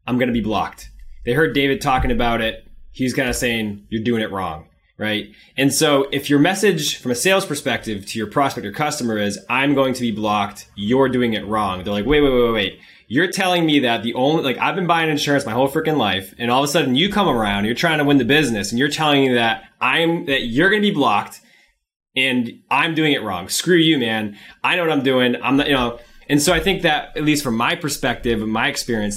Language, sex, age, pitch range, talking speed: English, male, 20-39, 105-140 Hz, 250 wpm